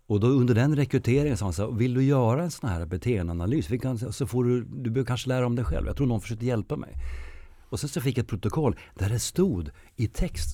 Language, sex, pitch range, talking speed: Swedish, male, 80-110 Hz, 240 wpm